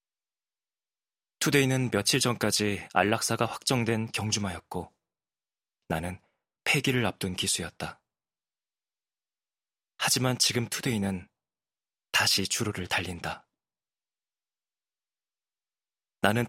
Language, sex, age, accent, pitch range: Korean, male, 20-39, native, 95-120 Hz